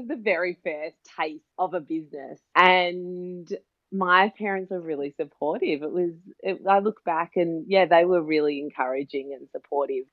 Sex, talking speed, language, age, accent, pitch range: female, 160 wpm, English, 30-49, Australian, 150-190 Hz